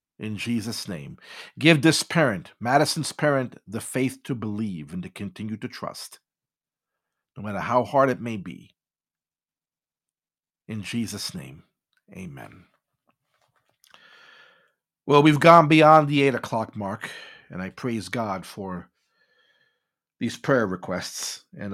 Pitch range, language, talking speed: 110-150 Hz, English, 125 wpm